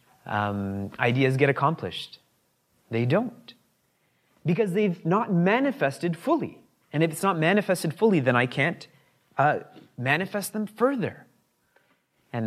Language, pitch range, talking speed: English, 130-195 Hz, 120 wpm